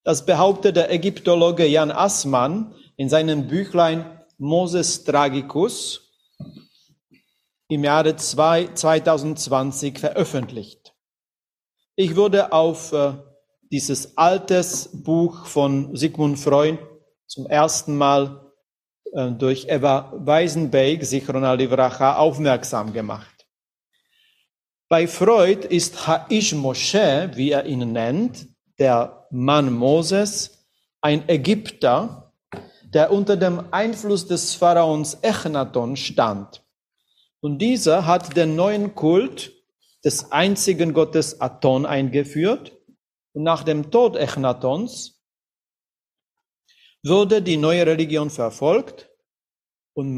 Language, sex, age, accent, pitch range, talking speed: German, male, 40-59, German, 140-185 Hz, 100 wpm